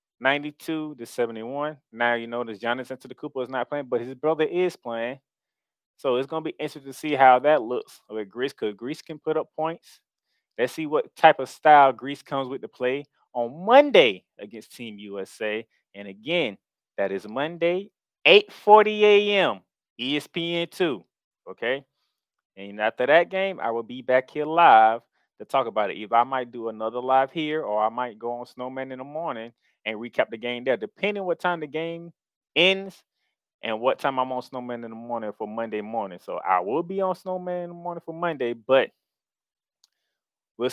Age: 20-39